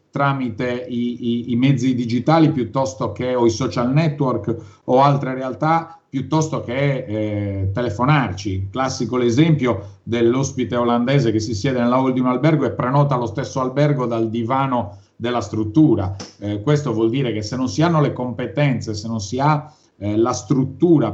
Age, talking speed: 40-59, 165 wpm